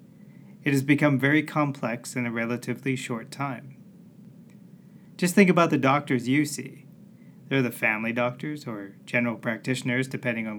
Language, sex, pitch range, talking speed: English, male, 120-155 Hz, 145 wpm